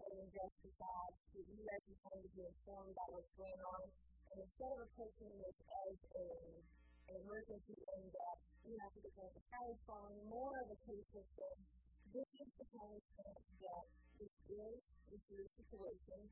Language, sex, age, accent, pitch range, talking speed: English, female, 30-49, American, 185-220 Hz, 150 wpm